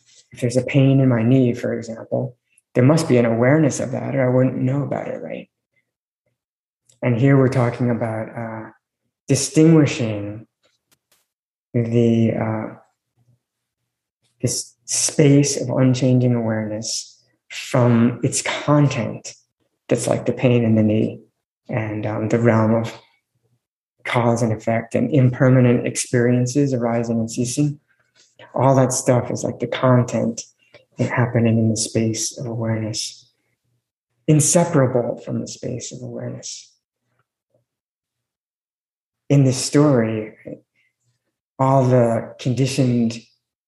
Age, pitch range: 20-39, 115-130 Hz